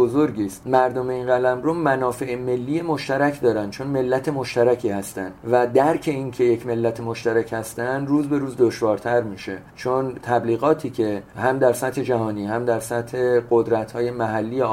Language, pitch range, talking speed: English, 105-130 Hz, 155 wpm